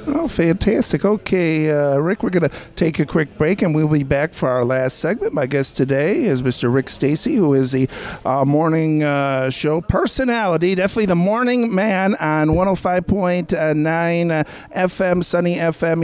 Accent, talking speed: American, 165 wpm